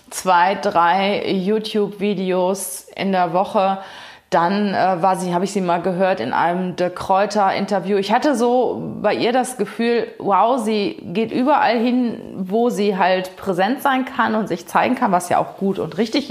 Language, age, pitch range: German, 30-49, 185-230 Hz